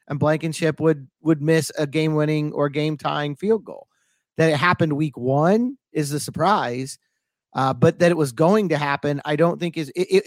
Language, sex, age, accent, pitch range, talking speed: English, male, 40-59, American, 150-175 Hz, 185 wpm